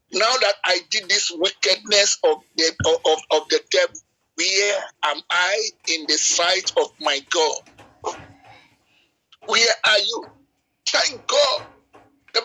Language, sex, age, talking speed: English, male, 50-69, 130 wpm